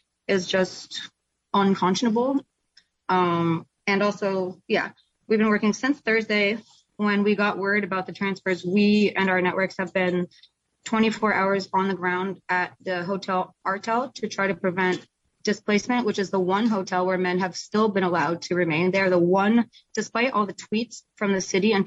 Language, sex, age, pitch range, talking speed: English, female, 20-39, 190-220 Hz, 175 wpm